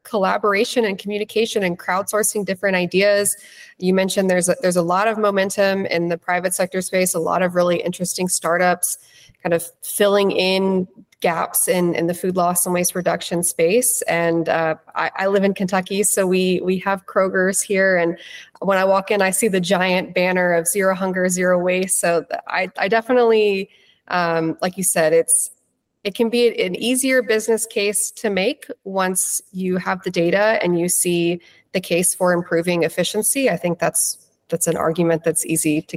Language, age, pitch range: English, 20-39, 175-200 Hz